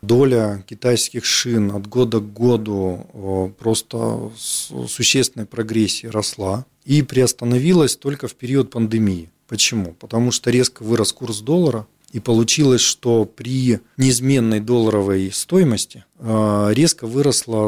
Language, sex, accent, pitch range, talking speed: Russian, male, native, 105-130 Hz, 115 wpm